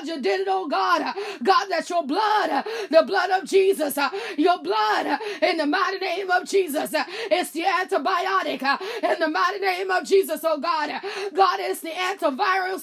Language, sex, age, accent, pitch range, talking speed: English, female, 20-39, American, 340-400 Hz, 175 wpm